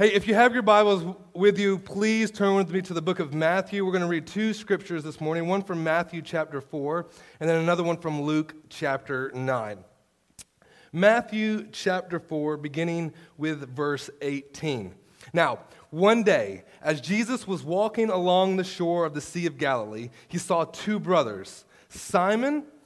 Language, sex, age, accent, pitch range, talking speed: English, male, 30-49, American, 130-190 Hz, 170 wpm